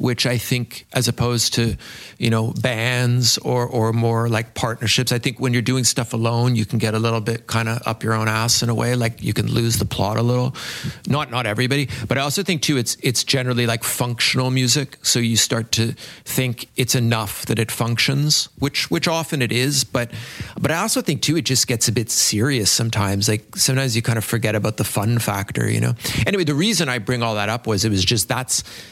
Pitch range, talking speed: 110-130 Hz, 230 wpm